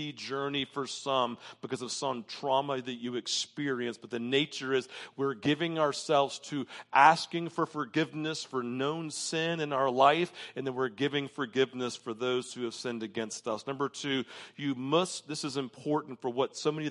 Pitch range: 120-150 Hz